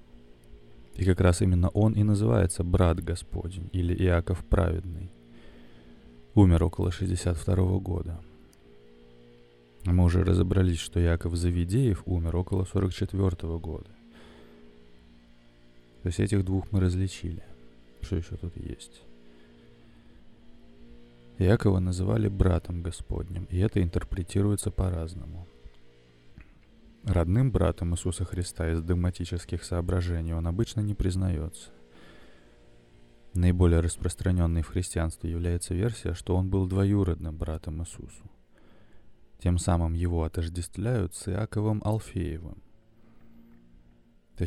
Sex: male